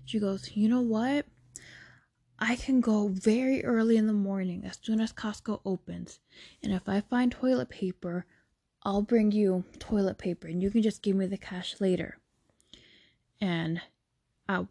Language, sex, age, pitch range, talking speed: English, female, 20-39, 180-230 Hz, 165 wpm